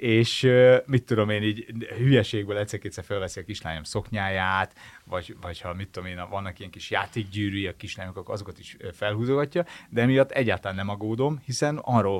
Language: Hungarian